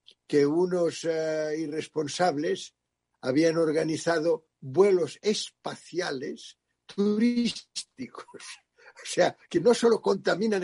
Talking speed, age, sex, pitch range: 85 wpm, 60-79, male, 150-195 Hz